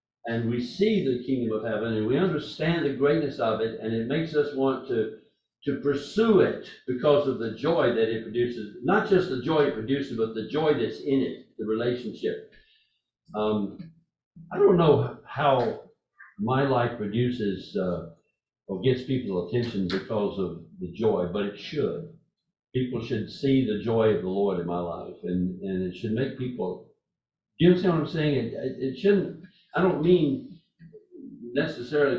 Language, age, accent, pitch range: English, 60-79, American, 115-160 Hz